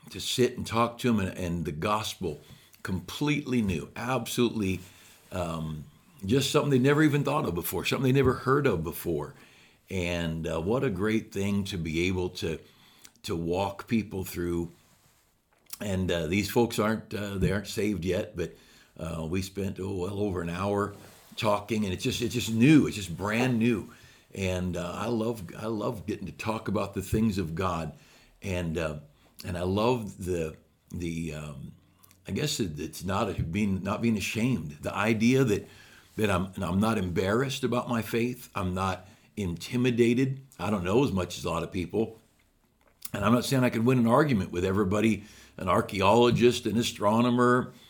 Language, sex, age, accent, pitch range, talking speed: English, male, 60-79, American, 90-120 Hz, 180 wpm